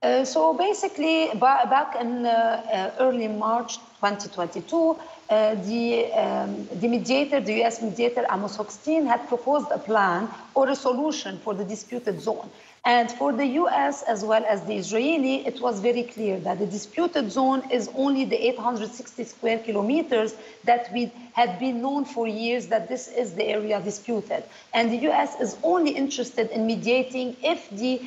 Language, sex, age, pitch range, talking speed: English, female, 40-59, 220-265 Hz, 160 wpm